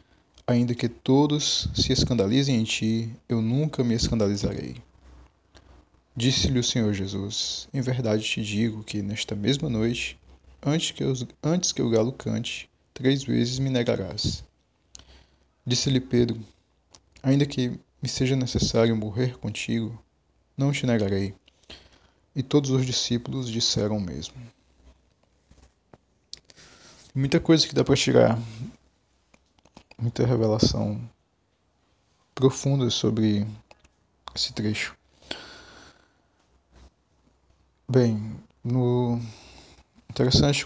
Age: 20-39